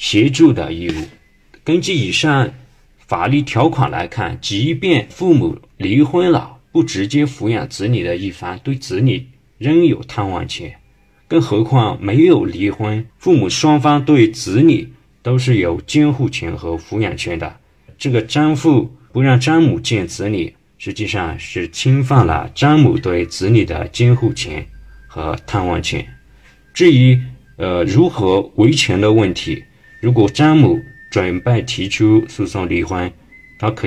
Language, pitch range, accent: Chinese, 100-145 Hz, native